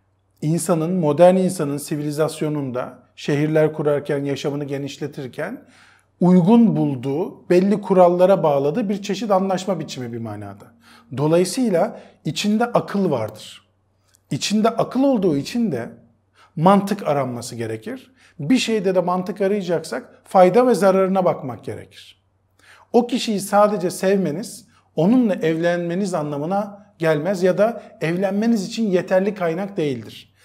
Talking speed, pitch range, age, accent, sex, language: 110 wpm, 120-200 Hz, 40-59, native, male, Turkish